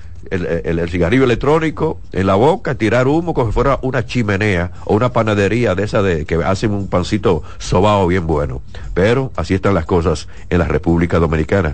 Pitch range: 90-120 Hz